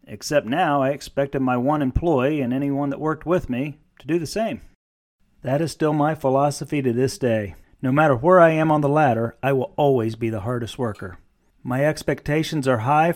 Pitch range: 130-185 Hz